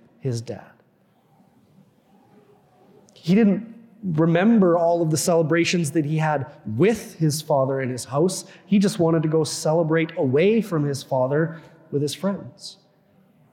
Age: 30-49